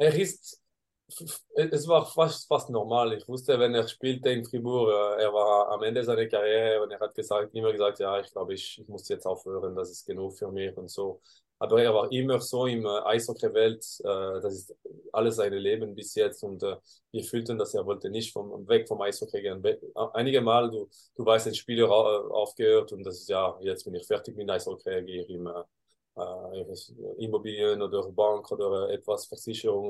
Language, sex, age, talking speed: German, male, 20-39, 200 wpm